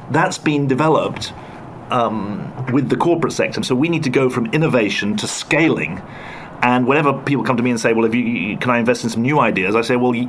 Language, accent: English, British